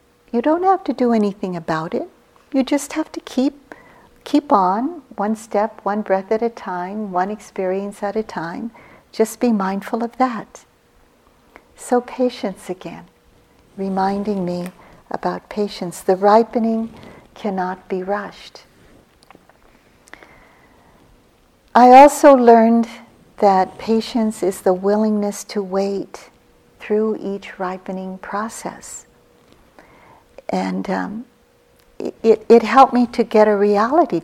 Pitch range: 190-240 Hz